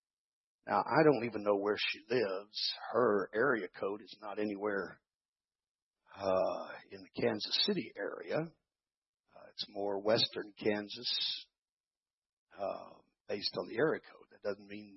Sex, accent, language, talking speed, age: male, American, English, 135 wpm, 60-79